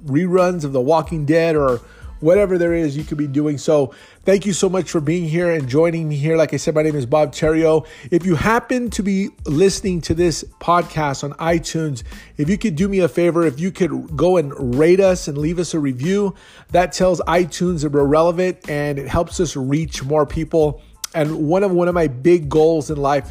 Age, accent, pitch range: 30-49, American, 145-175 Hz